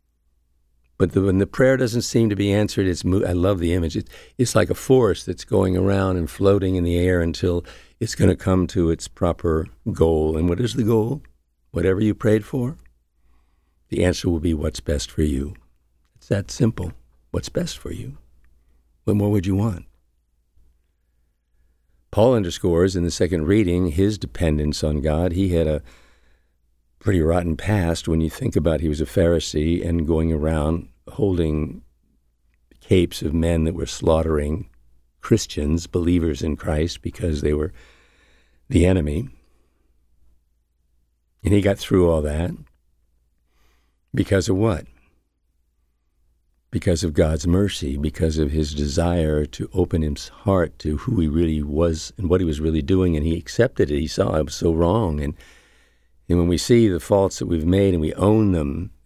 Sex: male